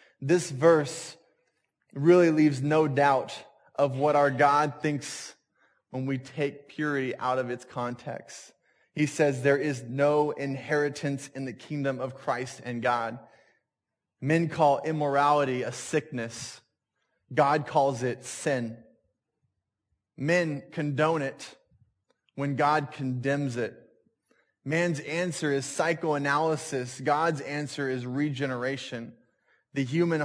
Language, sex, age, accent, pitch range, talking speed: English, male, 20-39, American, 130-155 Hz, 115 wpm